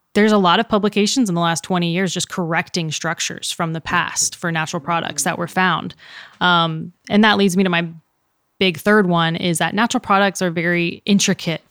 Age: 20-39